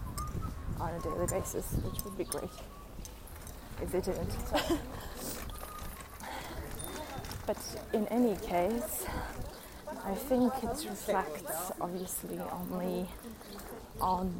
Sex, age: female, 20-39